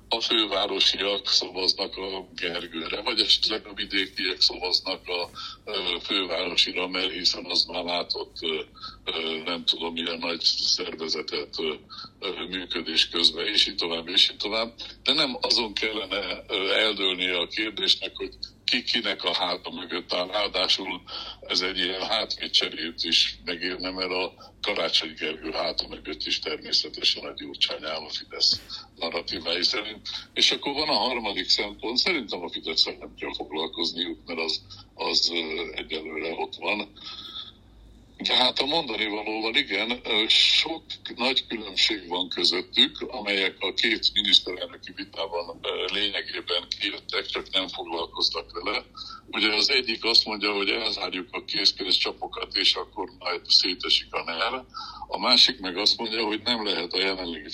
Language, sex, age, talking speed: Hungarian, male, 60-79, 135 wpm